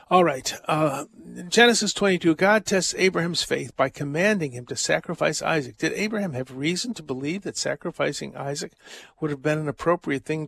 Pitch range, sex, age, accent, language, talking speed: 140-185 Hz, male, 50-69, American, English, 170 wpm